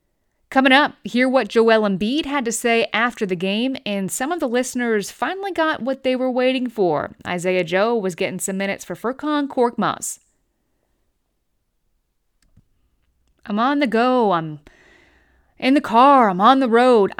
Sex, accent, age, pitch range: female, American, 20-39, 185-265 Hz